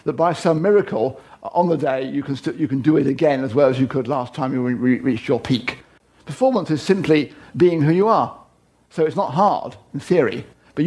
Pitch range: 150-200 Hz